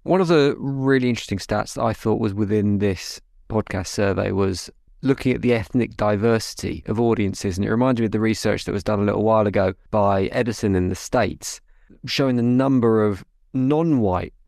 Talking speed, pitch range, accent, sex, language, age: 190 wpm, 100-125 Hz, British, male, English, 20-39